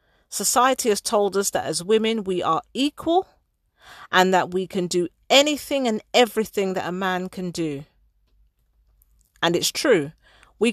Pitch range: 170-215 Hz